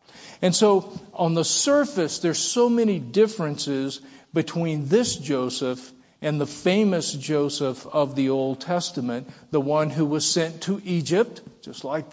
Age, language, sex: 50-69, English, male